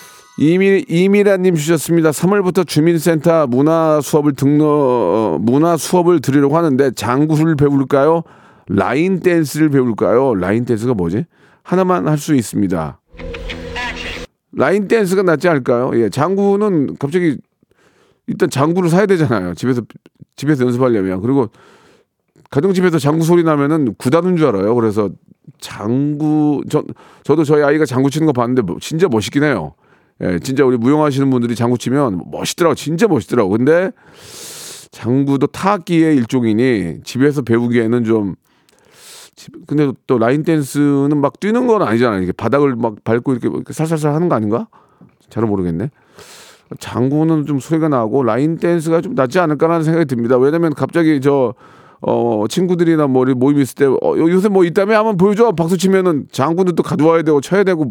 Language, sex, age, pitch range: Korean, male, 40-59, 125-170 Hz